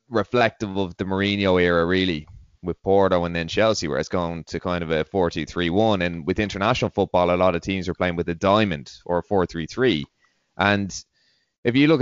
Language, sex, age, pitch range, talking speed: English, male, 20-39, 85-105 Hz, 220 wpm